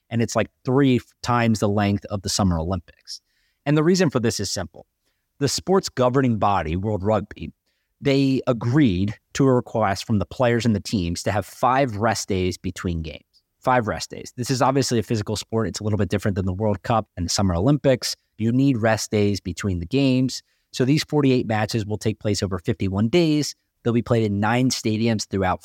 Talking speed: 205 wpm